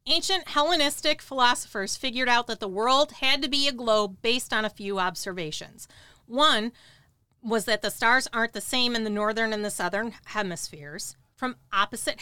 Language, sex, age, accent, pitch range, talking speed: English, female, 40-59, American, 215-280 Hz, 170 wpm